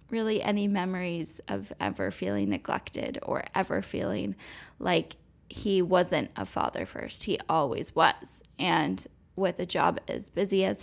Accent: American